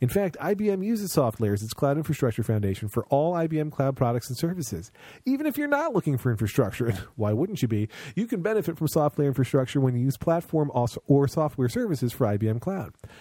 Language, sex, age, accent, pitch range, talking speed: English, male, 40-59, American, 120-165 Hz, 200 wpm